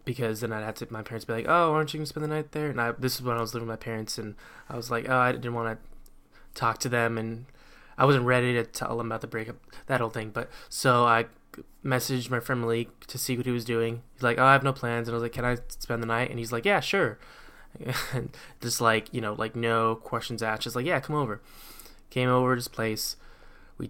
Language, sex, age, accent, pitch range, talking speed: English, male, 10-29, American, 115-125 Hz, 275 wpm